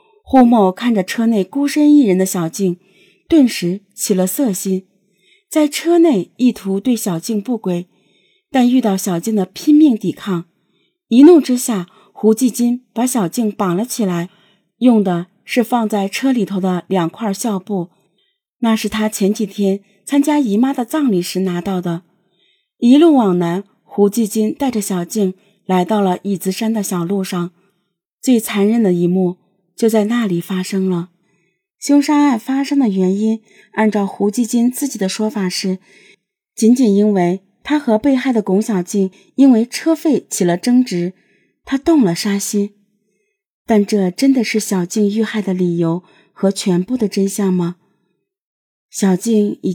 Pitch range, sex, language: 190-240 Hz, female, Chinese